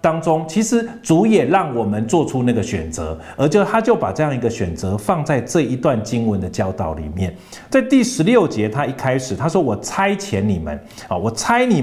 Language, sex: Chinese, male